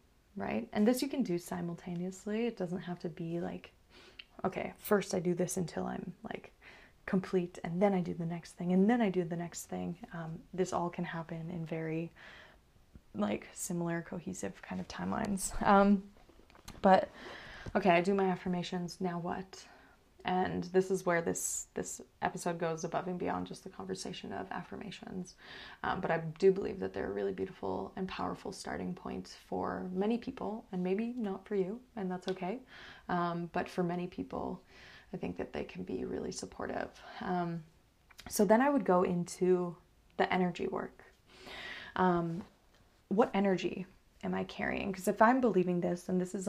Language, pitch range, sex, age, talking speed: English, 175-195 Hz, female, 20-39, 175 wpm